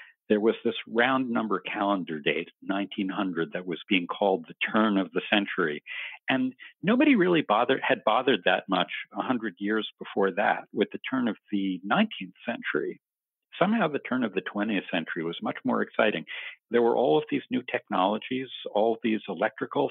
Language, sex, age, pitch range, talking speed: English, male, 50-69, 100-145 Hz, 170 wpm